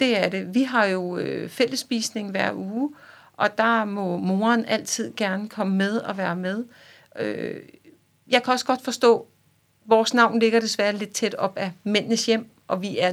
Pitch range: 190-225 Hz